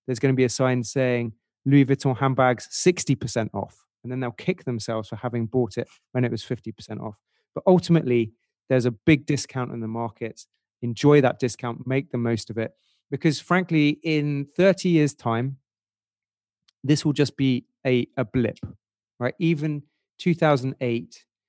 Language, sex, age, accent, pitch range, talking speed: English, male, 30-49, British, 115-145 Hz, 165 wpm